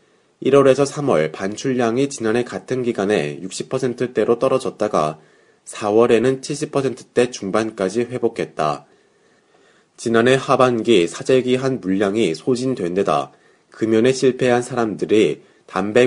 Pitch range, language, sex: 105-130 Hz, Korean, male